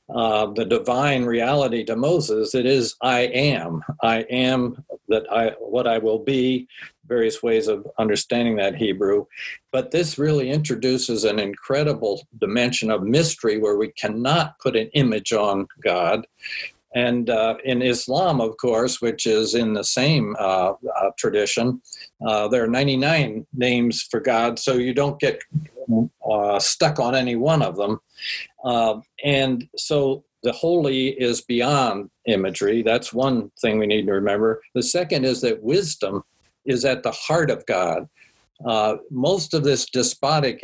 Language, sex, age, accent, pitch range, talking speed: English, male, 50-69, American, 115-140 Hz, 155 wpm